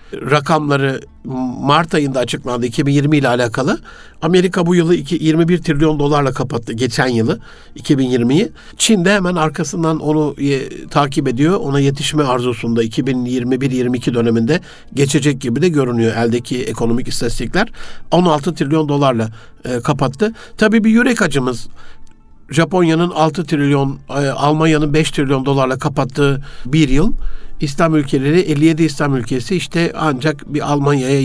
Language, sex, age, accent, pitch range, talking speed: Turkish, male, 60-79, native, 135-170 Hz, 125 wpm